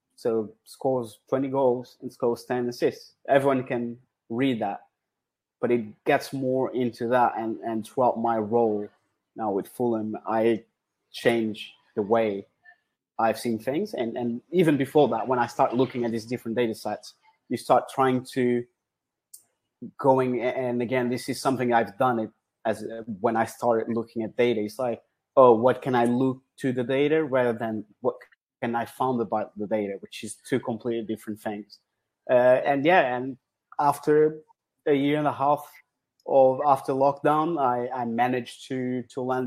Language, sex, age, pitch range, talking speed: English, male, 20-39, 115-130 Hz, 170 wpm